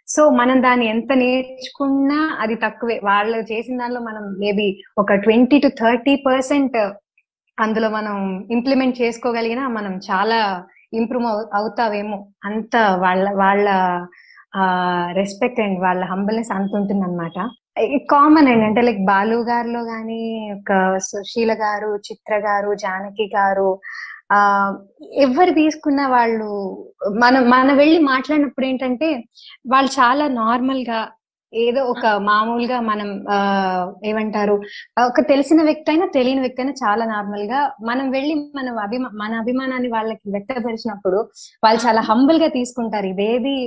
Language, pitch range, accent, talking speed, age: Telugu, 205-255 Hz, native, 120 wpm, 20-39